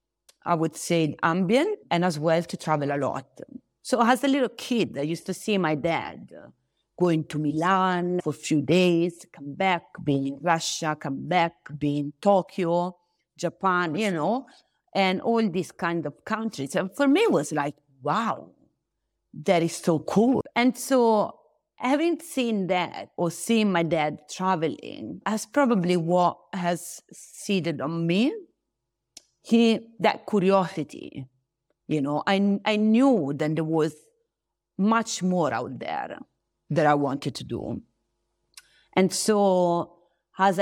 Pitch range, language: 155-205 Hz, English